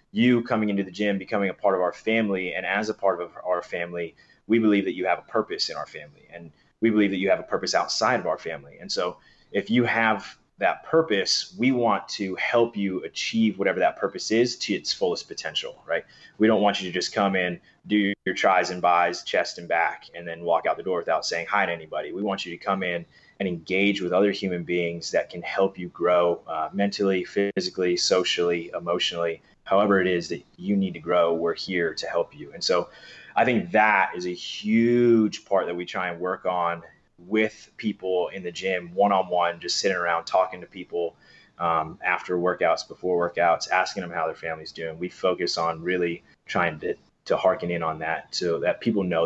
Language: English